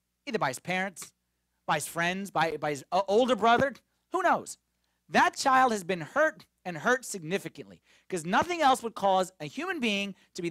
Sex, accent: male, American